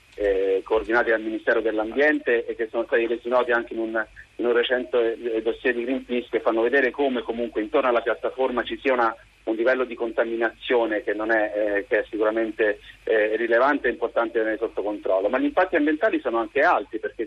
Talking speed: 200 wpm